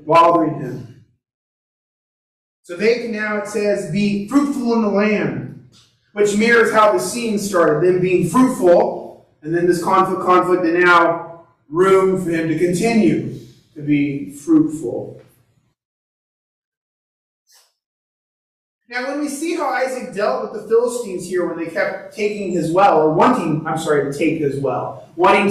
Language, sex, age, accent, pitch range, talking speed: English, male, 30-49, American, 165-235 Hz, 150 wpm